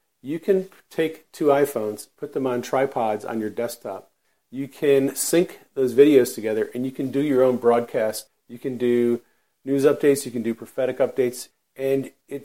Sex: male